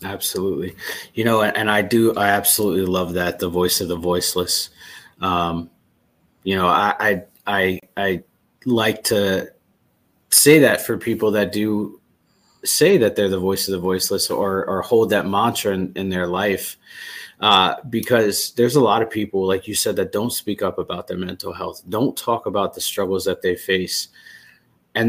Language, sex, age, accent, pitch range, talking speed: English, male, 30-49, American, 95-105 Hz, 175 wpm